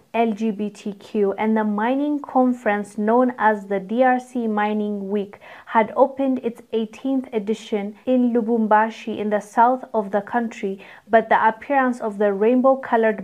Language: English